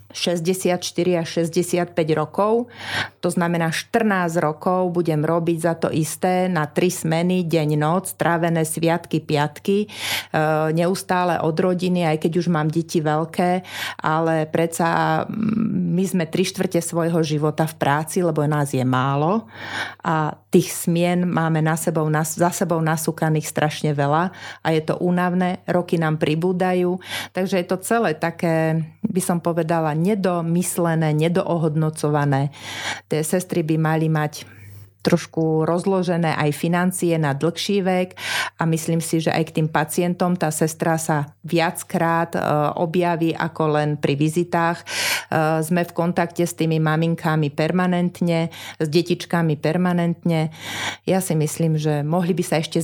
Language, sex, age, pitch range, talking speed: Slovak, female, 40-59, 155-180 Hz, 135 wpm